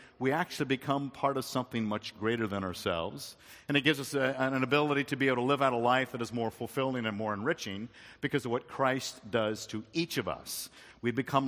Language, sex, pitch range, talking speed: English, male, 115-145 Hz, 220 wpm